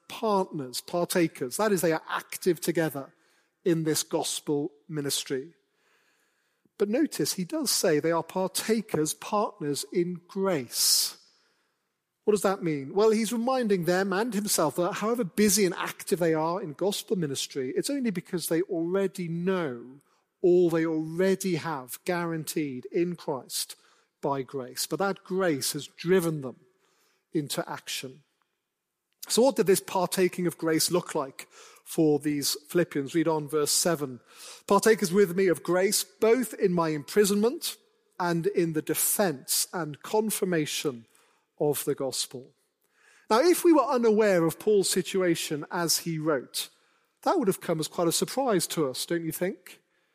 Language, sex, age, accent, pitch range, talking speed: English, male, 40-59, British, 160-205 Hz, 150 wpm